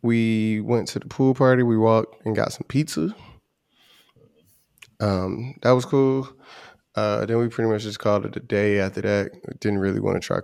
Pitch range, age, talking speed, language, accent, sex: 100-115 Hz, 20-39, 190 wpm, English, American, male